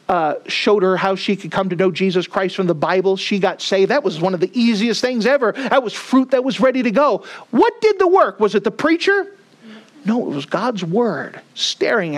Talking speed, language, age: 230 wpm, English, 50-69